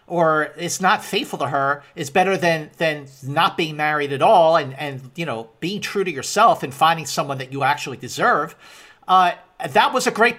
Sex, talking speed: male, 200 wpm